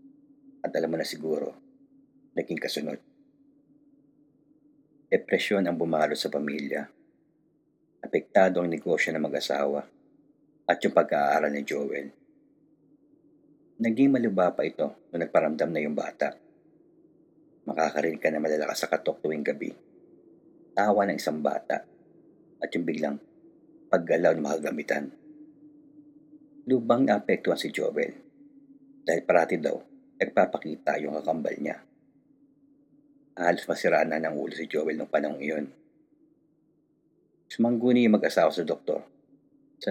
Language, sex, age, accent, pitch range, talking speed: Filipino, male, 50-69, native, 275-320 Hz, 115 wpm